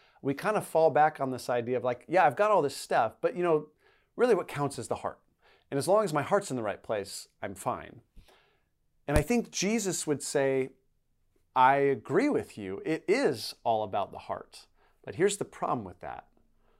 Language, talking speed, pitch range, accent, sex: English, 210 wpm, 125-170 Hz, American, male